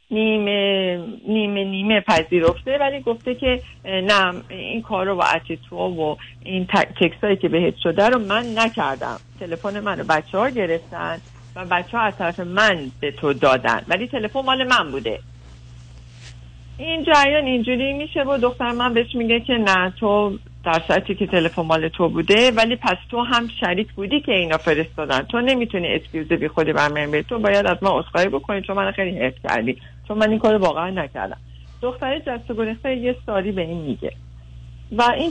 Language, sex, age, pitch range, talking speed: Persian, female, 50-69, 160-235 Hz, 170 wpm